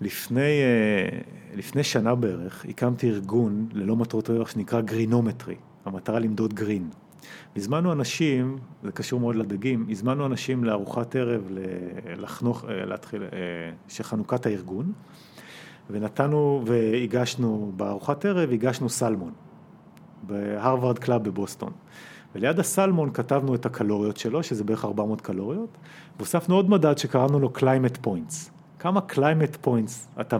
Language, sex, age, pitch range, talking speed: Hebrew, male, 40-59, 110-145 Hz, 115 wpm